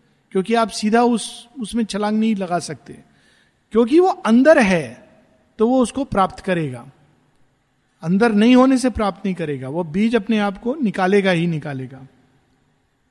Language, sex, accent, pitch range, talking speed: Hindi, male, native, 185-250 Hz, 150 wpm